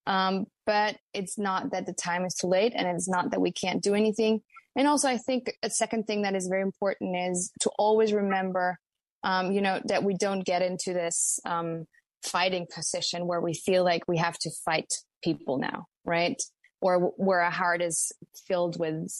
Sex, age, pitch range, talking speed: female, 20-39, 175-215 Hz, 200 wpm